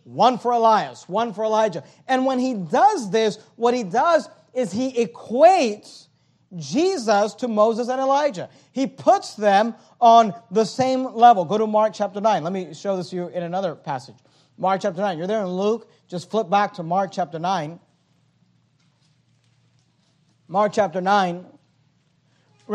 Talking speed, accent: 160 wpm, American